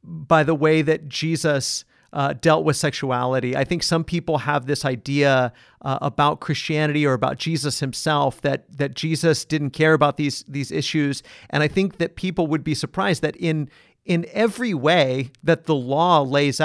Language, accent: English, American